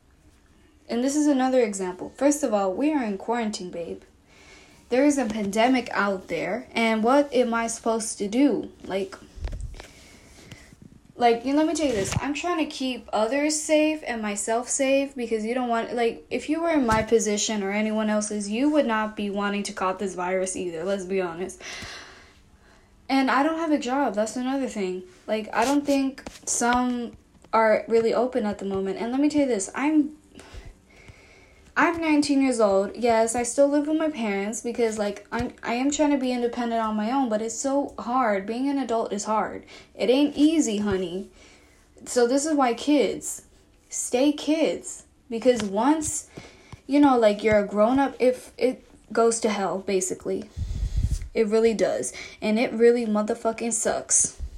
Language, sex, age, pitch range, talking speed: English, female, 10-29, 205-270 Hz, 180 wpm